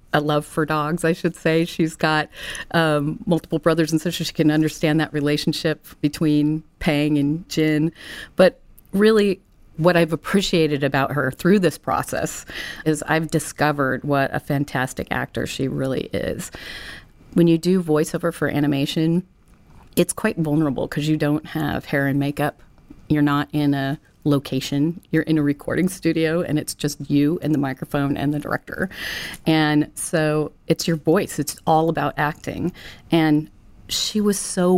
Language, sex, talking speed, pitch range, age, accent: English, female, 160 wpm, 145-165 Hz, 40-59, American